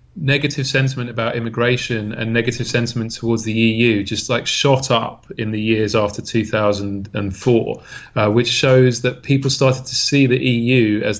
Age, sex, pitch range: 30-49, male, 115-140 Hz